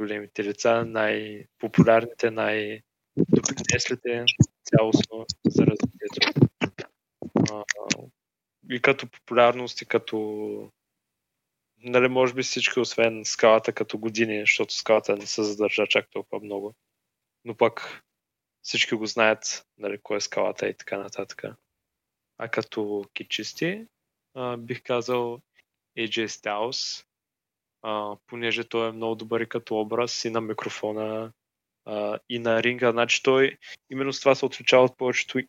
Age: 20-39